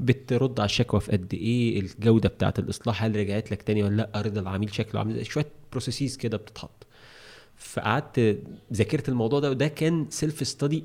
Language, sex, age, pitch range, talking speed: Arabic, male, 30-49, 100-125 Hz, 170 wpm